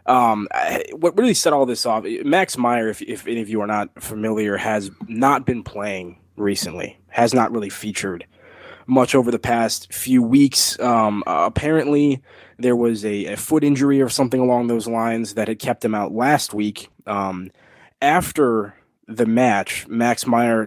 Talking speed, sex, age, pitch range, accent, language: 170 wpm, male, 20-39, 105-130 Hz, American, English